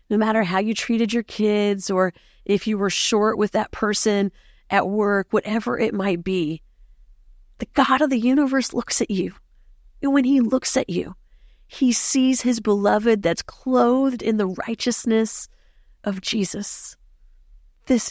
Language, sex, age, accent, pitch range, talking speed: English, female, 40-59, American, 195-235 Hz, 155 wpm